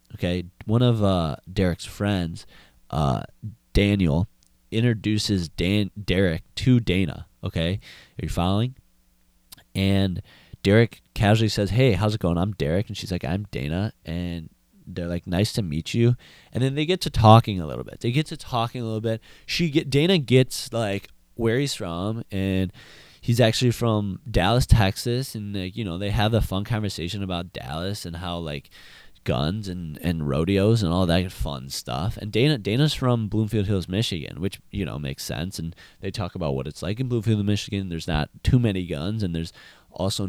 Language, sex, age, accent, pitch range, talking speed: English, male, 20-39, American, 85-115 Hz, 185 wpm